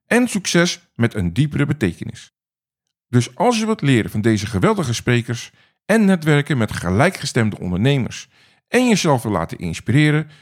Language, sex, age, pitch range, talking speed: Dutch, male, 50-69, 115-175 Hz, 145 wpm